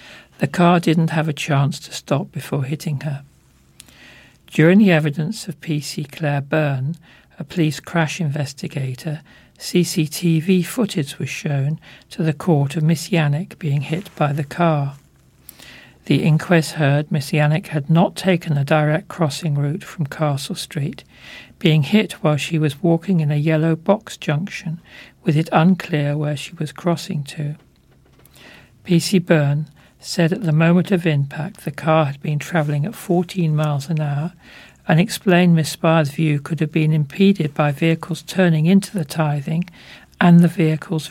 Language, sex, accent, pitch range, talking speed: English, male, British, 150-170 Hz, 155 wpm